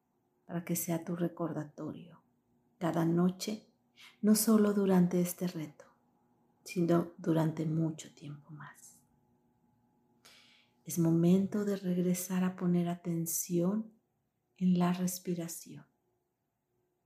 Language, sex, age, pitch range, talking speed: Spanish, female, 50-69, 150-180 Hz, 95 wpm